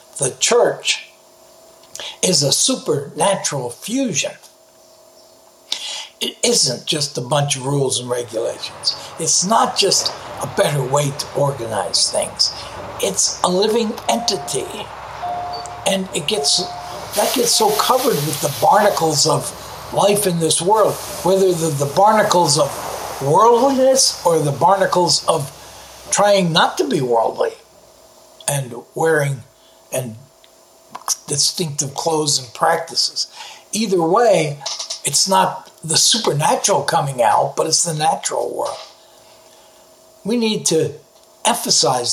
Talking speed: 115 wpm